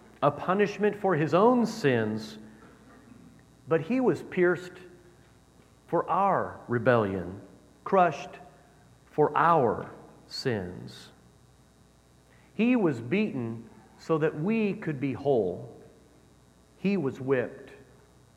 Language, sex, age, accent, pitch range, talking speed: English, male, 40-59, American, 125-180 Hz, 95 wpm